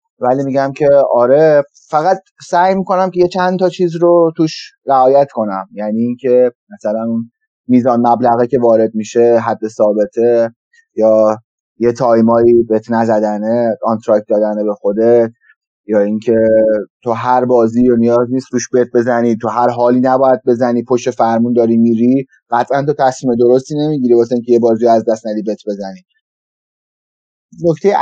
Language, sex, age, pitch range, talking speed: Persian, male, 30-49, 115-145 Hz, 150 wpm